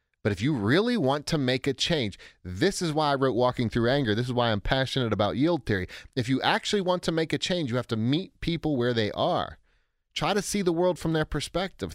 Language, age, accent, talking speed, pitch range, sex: English, 30-49, American, 245 wpm, 105-170 Hz, male